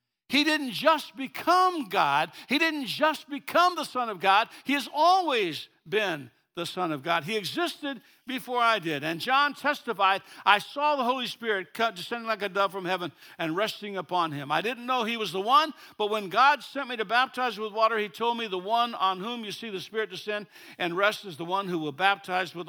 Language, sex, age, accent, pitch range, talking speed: English, male, 60-79, American, 145-220 Hz, 215 wpm